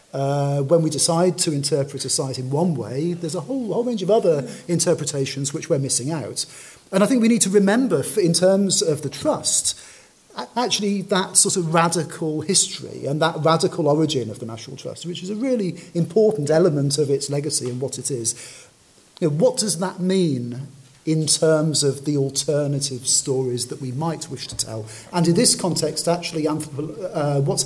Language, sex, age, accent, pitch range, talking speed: English, male, 40-59, British, 140-175 Hz, 185 wpm